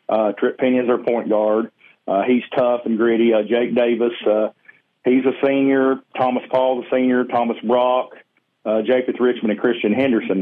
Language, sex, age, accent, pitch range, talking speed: English, male, 40-59, American, 110-125 Hz, 175 wpm